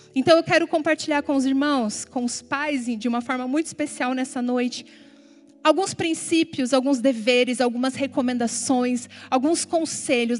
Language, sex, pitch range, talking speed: Portuguese, female, 250-300 Hz, 145 wpm